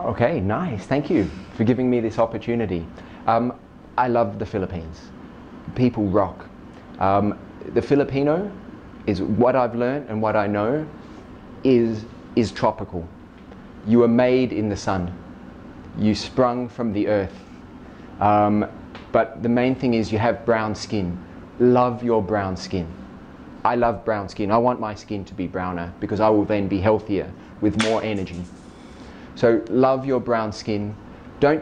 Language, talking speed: English, 155 wpm